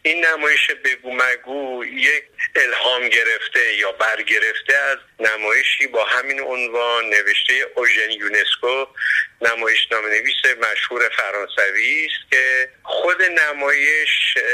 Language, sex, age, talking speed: Persian, male, 50-69, 105 wpm